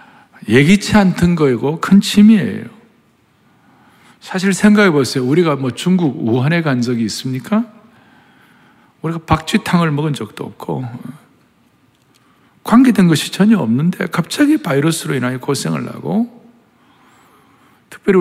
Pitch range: 125-190 Hz